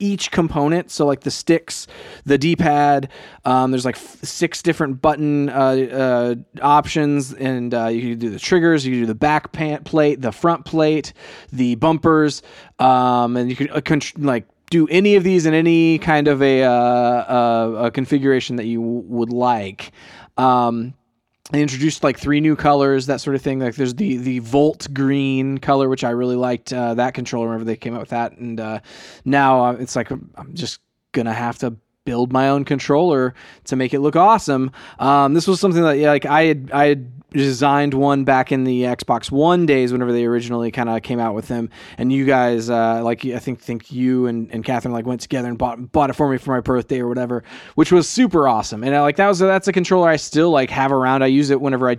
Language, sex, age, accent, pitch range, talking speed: English, male, 20-39, American, 120-145 Hz, 210 wpm